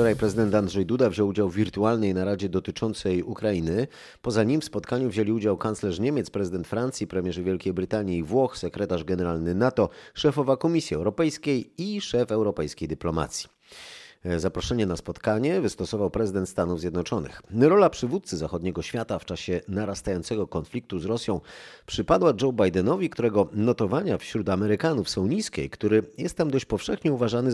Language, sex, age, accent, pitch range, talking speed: Polish, male, 30-49, native, 95-120 Hz, 150 wpm